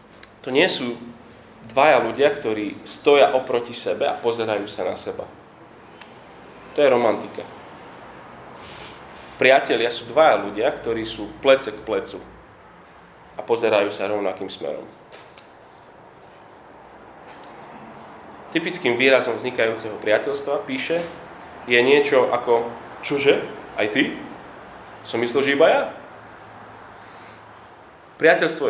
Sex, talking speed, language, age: male, 100 wpm, Slovak, 30-49